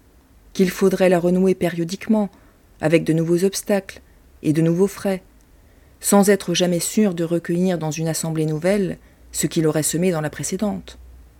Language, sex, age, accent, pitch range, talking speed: French, female, 40-59, French, 155-195 Hz, 160 wpm